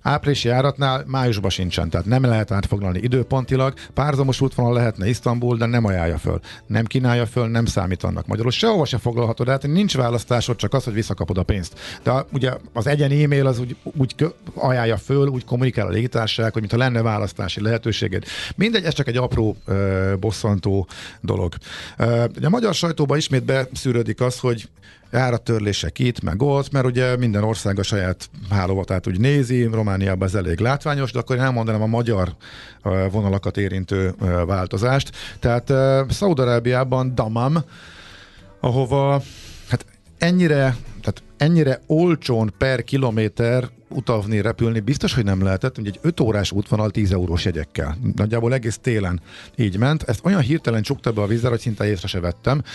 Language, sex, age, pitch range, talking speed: Hungarian, male, 50-69, 100-130 Hz, 160 wpm